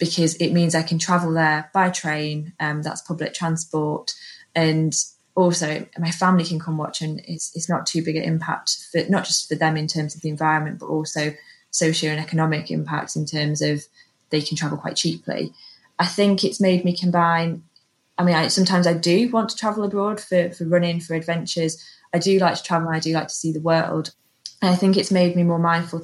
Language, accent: English, British